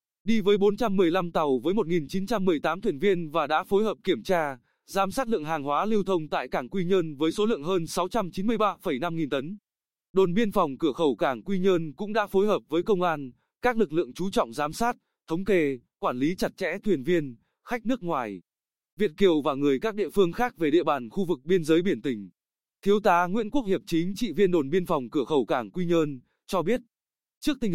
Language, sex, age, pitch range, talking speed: Vietnamese, male, 20-39, 165-215 Hz, 220 wpm